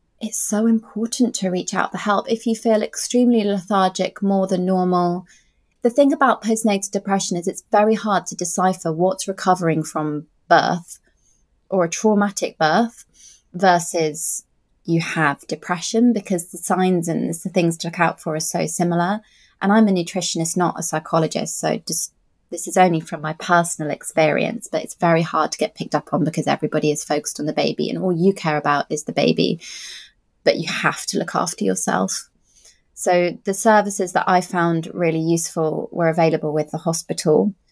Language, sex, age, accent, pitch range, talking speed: English, female, 20-39, British, 165-200 Hz, 175 wpm